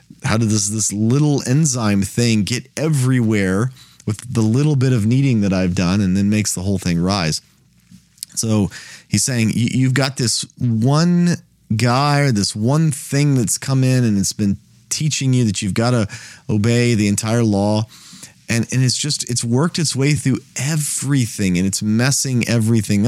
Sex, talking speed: male, 175 wpm